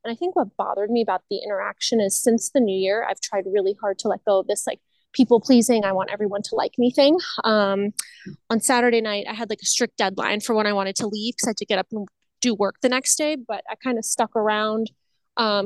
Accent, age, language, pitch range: American, 20-39, English, 205-245 Hz